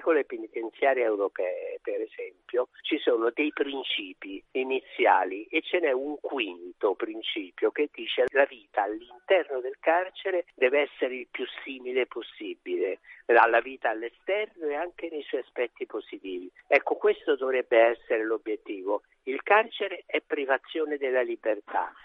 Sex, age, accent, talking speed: male, 50-69, native, 135 wpm